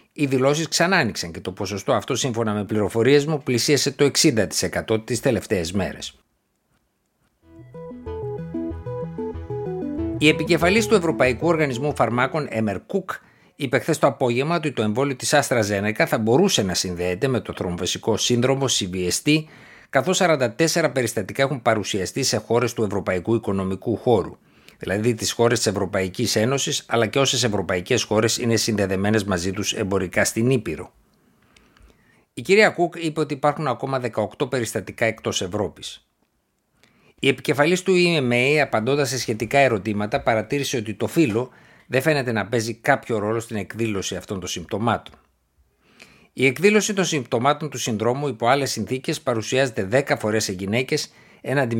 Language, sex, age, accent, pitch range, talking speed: Greek, male, 60-79, native, 105-140 Hz, 140 wpm